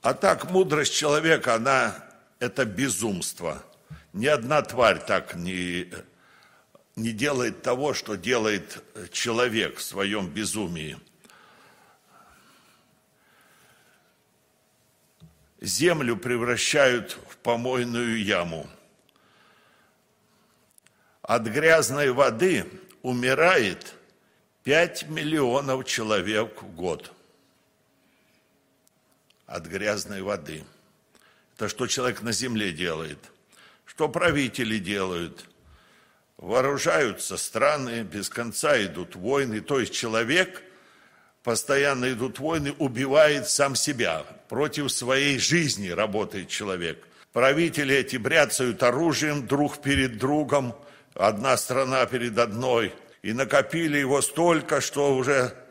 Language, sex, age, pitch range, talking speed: Russian, male, 60-79, 120-145 Hz, 90 wpm